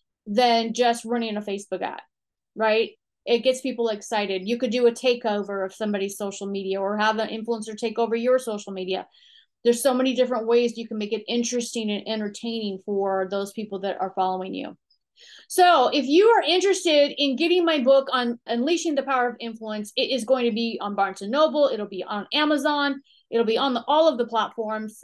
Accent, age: American, 30-49